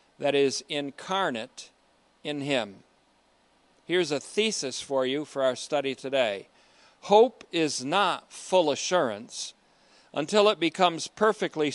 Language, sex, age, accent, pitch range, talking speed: English, male, 50-69, American, 125-155 Hz, 115 wpm